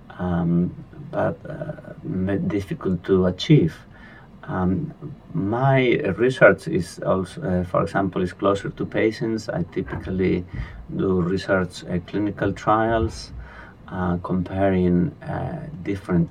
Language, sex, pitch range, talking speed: English, male, 90-105 Hz, 105 wpm